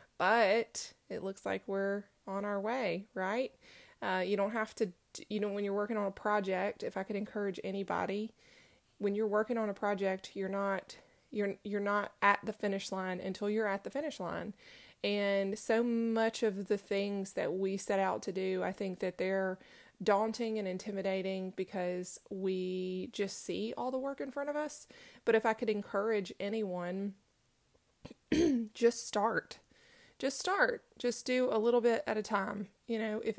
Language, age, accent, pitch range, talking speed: English, 20-39, American, 195-230 Hz, 180 wpm